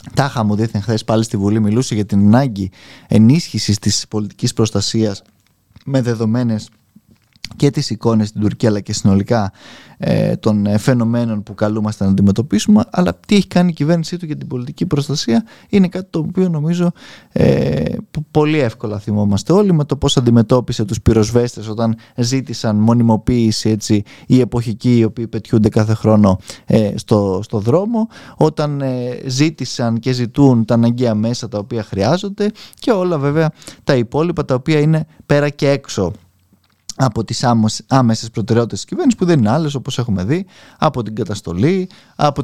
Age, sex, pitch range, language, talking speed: 20-39, male, 110-150 Hz, Greek, 160 wpm